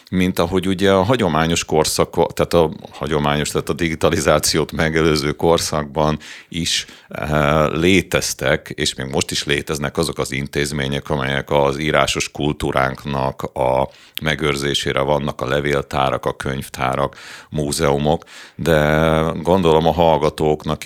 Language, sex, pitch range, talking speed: Hungarian, male, 70-80 Hz, 115 wpm